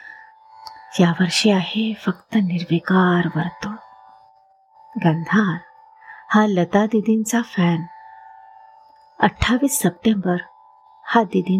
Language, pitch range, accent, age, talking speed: Marathi, 180-280 Hz, native, 30-49, 55 wpm